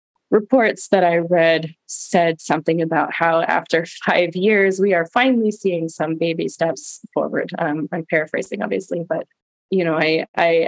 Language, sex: English, female